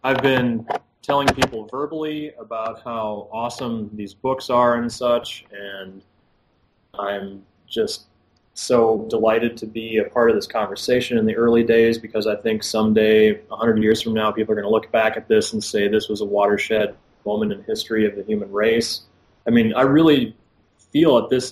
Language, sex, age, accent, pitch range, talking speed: English, male, 20-39, American, 110-130 Hz, 185 wpm